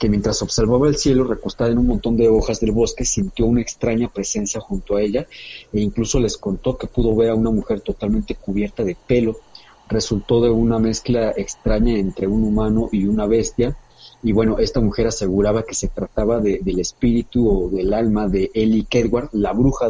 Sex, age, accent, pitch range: male, 40-59, Mexican, 110-125 Hz